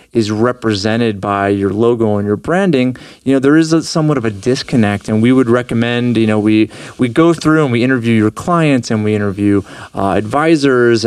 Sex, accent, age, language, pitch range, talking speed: male, American, 30-49, English, 110-135 Hz, 200 wpm